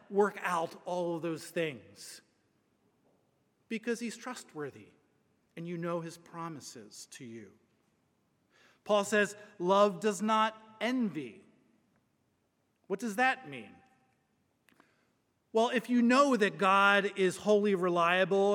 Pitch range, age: 195-245 Hz, 40-59